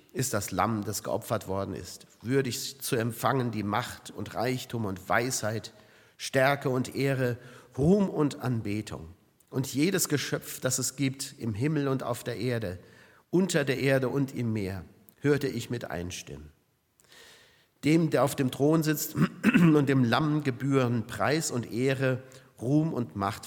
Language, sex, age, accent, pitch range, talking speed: German, male, 50-69, German, 105-145 Hz, 155 wpm